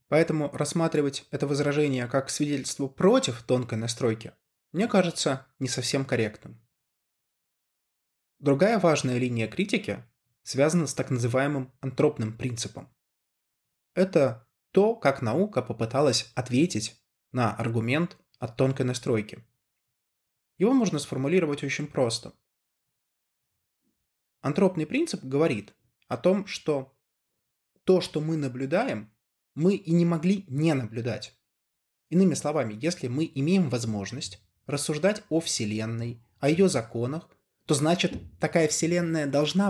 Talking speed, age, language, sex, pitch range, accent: 110 wpm, 20-39, Russian, male, 120-165 Hz, native